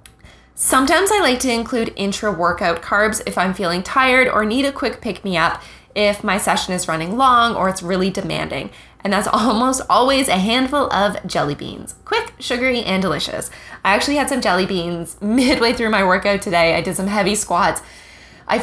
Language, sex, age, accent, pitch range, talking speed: English, female, 20-39, American, 180-240 Hz, 180 wpm